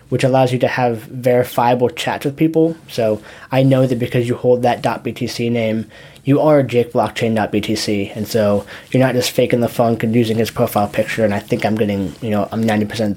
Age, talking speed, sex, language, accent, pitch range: 20-39, 200 wpm, male, English, American, 115-140 Hz